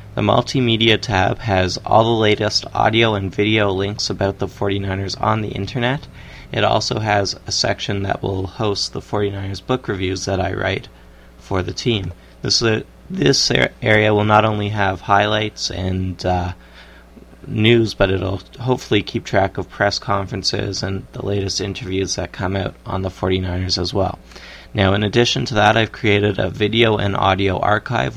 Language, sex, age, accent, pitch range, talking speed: English, male, 30-49, American, 95-110 Hz, 170 wpm